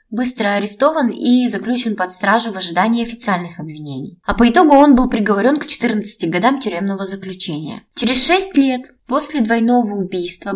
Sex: female